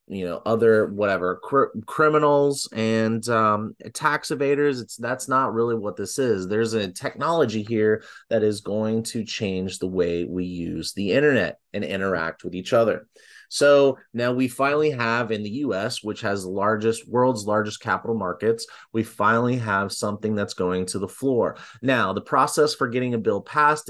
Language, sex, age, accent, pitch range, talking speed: English, male, 30-49, American, 100-130 Hz, 175 wpm